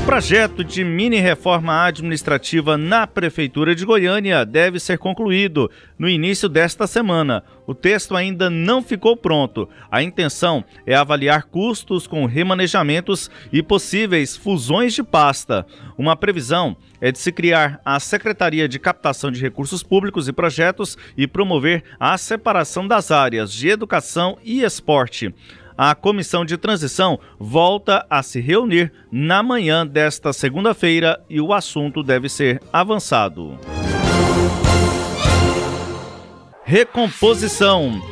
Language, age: Portuguese, 40-59